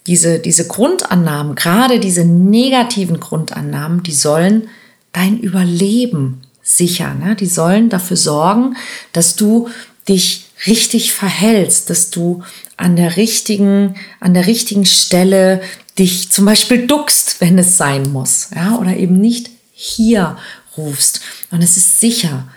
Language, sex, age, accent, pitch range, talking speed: German, female, 40-59, German, 175-220 Hz, 130 wpm